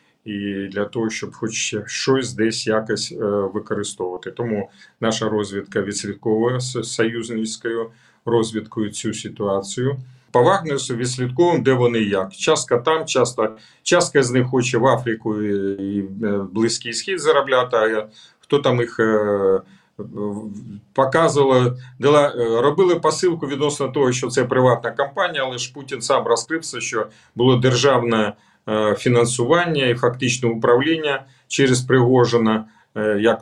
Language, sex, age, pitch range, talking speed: Ukrainian, male, 40-59, 110-130 Hz, 115 wpm